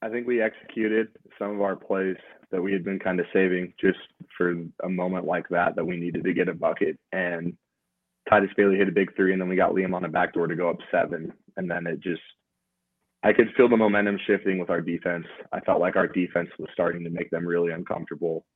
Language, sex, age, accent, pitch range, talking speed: English, male, 20-39, American, 85-100 Hz, 235 wpm